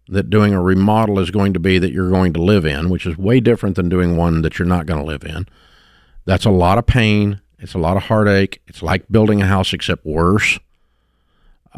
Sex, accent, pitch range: male, American, 90-110 Hz